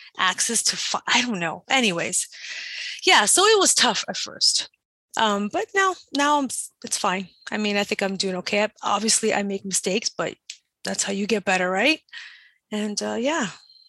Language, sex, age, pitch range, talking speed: English, female, 20-39, 195-230 Hz, 175 wpm